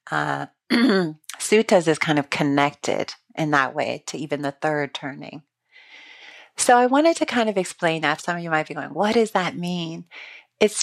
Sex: female